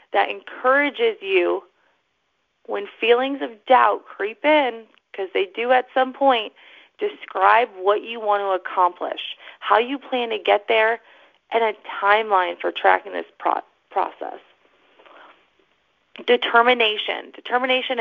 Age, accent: 30-49, American